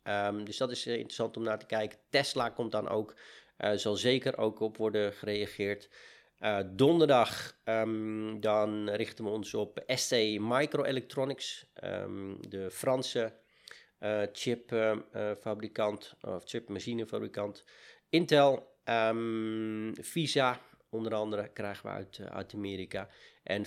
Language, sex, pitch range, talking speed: Dutch, male, 105-125 Hz, 125 wpm